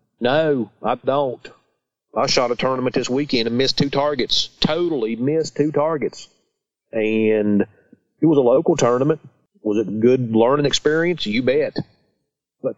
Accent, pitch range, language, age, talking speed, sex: American, 110-145 Hz, English, 40-59, 150 wpm, male